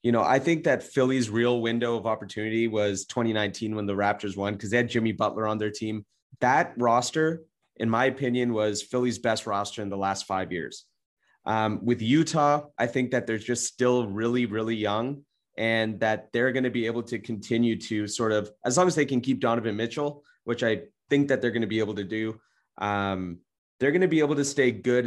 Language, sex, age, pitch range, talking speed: English, male, 30-49, 105-125 Hz, 215 wpm